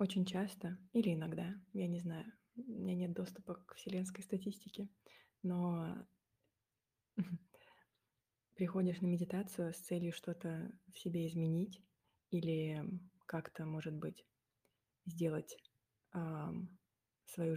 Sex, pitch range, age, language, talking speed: female, 165-190 Hz, 20-39, Russian, 100 wpm